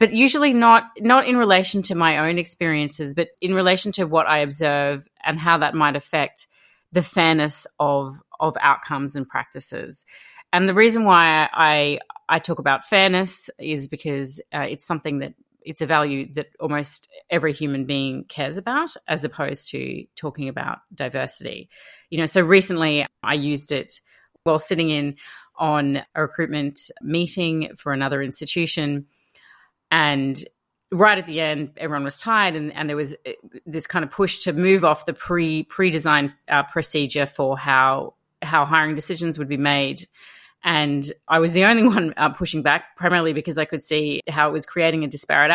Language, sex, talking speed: English, female, 170 wpm